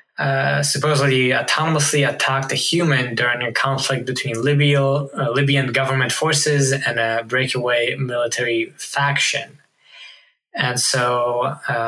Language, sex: English, male